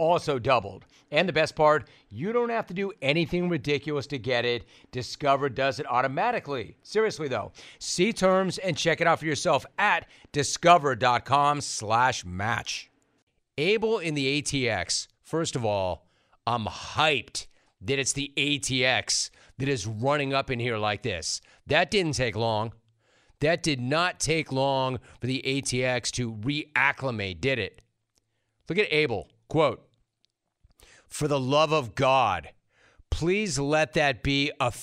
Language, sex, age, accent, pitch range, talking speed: English, male, 40-59, American, 120-160 Hz, 145 wpm